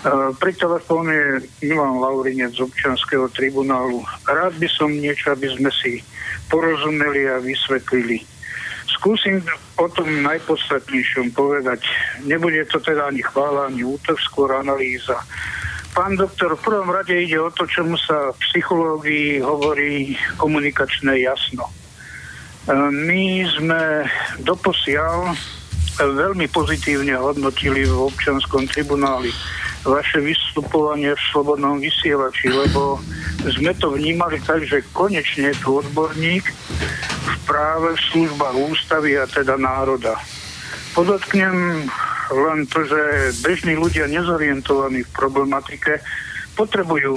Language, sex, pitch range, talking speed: Slovak, male, 135-160 Hz, 110 wpm